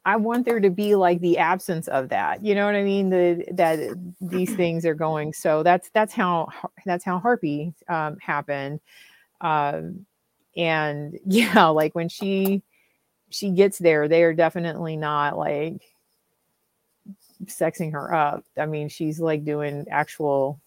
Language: English